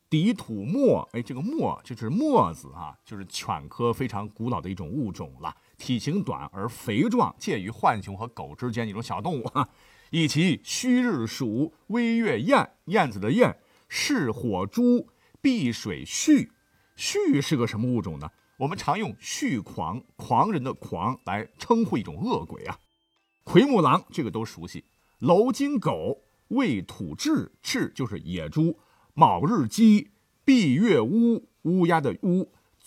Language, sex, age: Chinese, male, 50-69